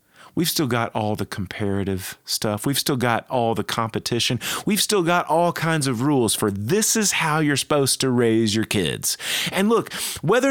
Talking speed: 190 wpm